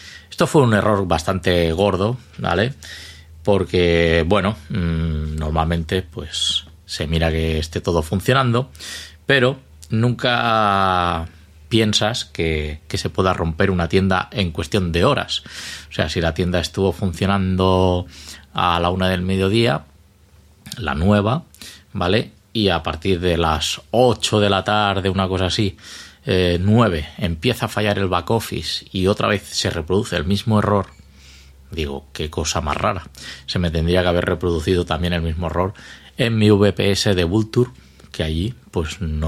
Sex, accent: male, Spanish